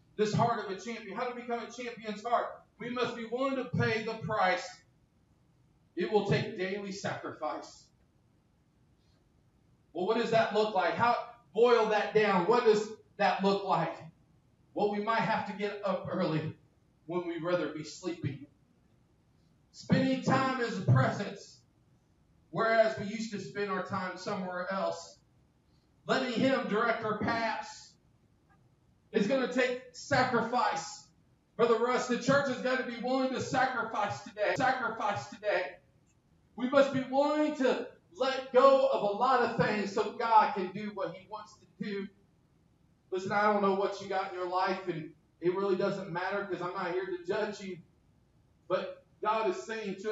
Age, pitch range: 40-59, 185-235 Hz